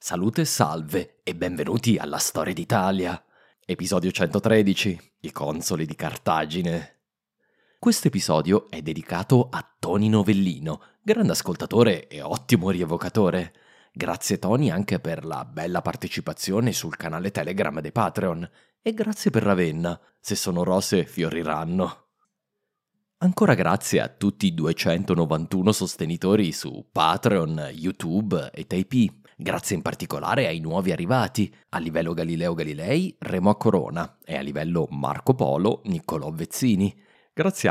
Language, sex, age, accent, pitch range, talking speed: English, male, 30-49, Italian, 80-120 Hz, 125 wpm